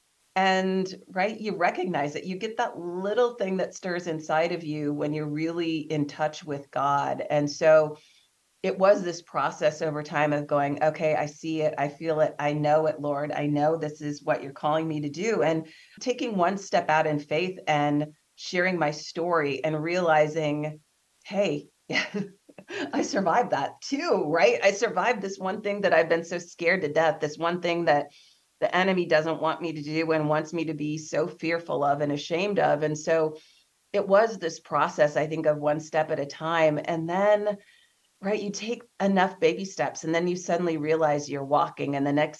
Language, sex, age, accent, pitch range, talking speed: English, female, 30-49, American, 150-190 Hz, 195 wpm